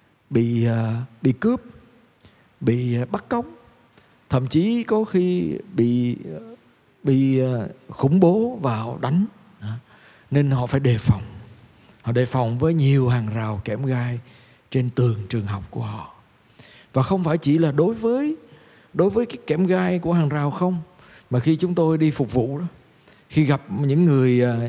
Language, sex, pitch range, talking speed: Vietnamese, male, 125-165 Hz, 155 wpm